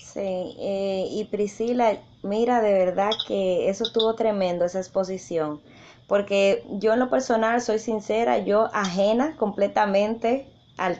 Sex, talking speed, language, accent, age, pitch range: female, 130 wpm, Spanish, American, 20-39, 195-245 Hz